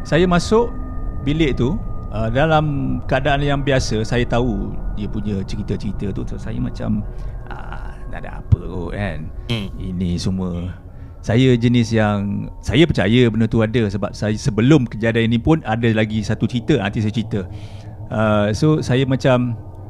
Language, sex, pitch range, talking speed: Malay, male, 100-145 Hz, 155 wpm